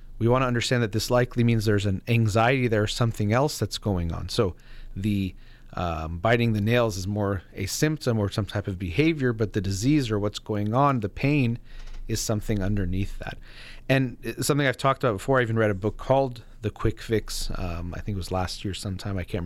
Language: English